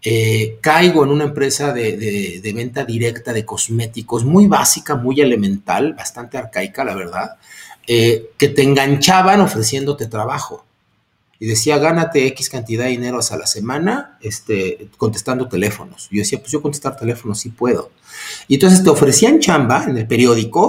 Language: Spanish